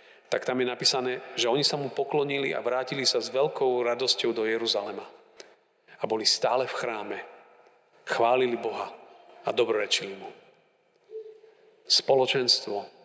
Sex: male